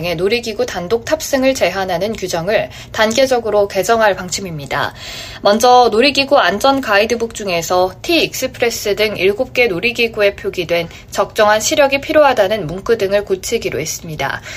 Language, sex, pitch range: Korean, female, 185-255 Hz